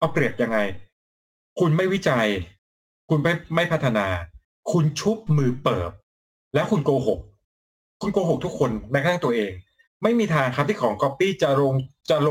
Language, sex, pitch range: Thai, male, 135-200 Hz